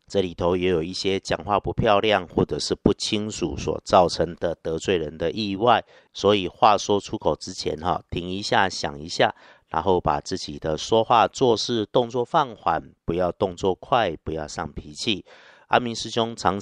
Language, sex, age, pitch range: Chinese, male, 50-69, 85-105 Hz